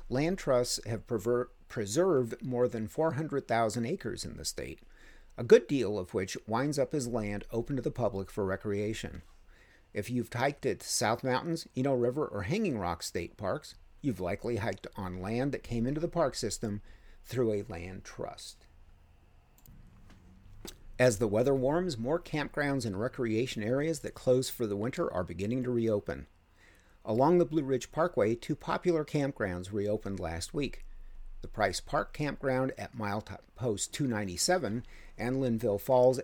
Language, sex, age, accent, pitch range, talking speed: English, male, 50-69, American, 100-130 Hz, 155 wpm